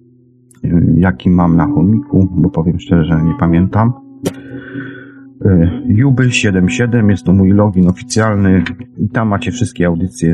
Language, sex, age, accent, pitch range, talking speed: Polish, male, 40-59, native, 90-115 Hz, 130 wpm